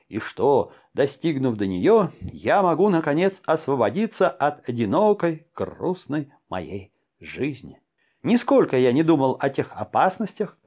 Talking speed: 120 wpm